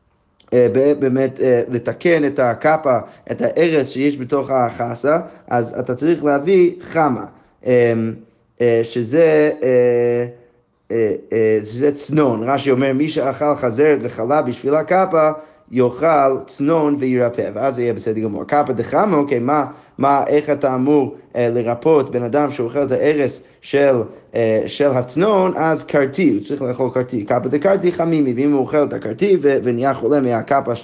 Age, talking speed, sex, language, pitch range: 30-49, 150 wpm, male, Hebrew, 120-155 Hz